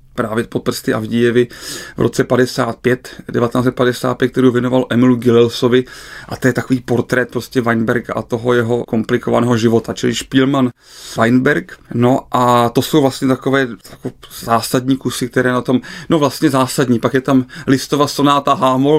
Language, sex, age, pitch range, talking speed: Czech, male, 30-49, 125-140 Hz, 150 wpm